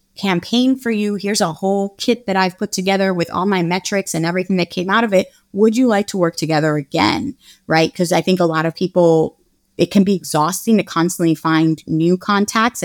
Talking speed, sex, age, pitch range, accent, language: 215 wpm, female, 20-39, 165-205 Hz, American, English